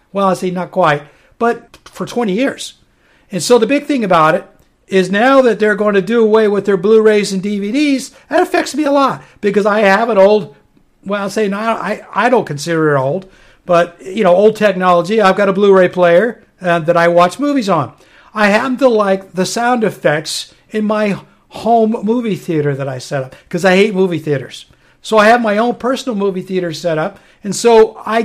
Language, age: English, 60-79